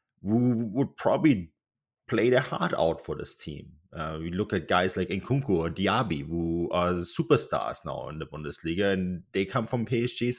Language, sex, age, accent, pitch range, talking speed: English, male, 30-49, German, 85-110 Hz, 185 wpm